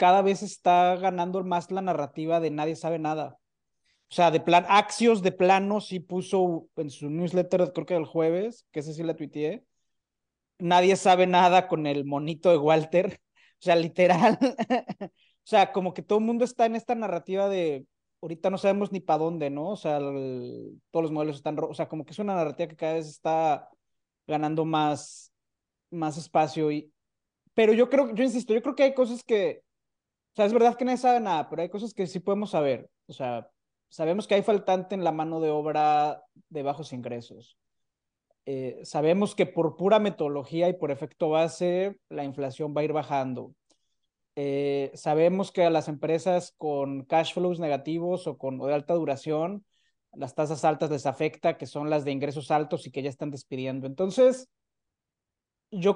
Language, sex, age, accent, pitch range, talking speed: Spanish, male, 30-49, Mexican, 150-195 Hz, 190 wpm